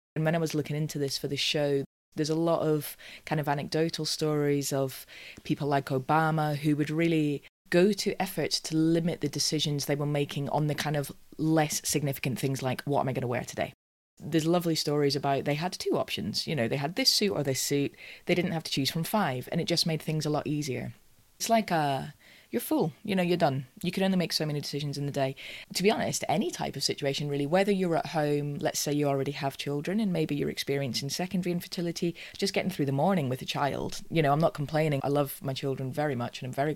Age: 20-39